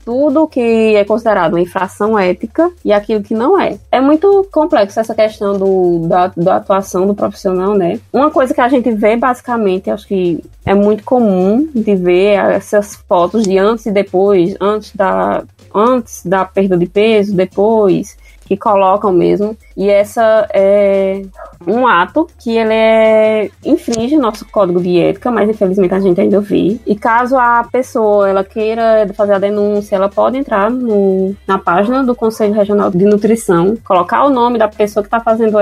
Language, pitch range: Portuguese, 195-230 Hz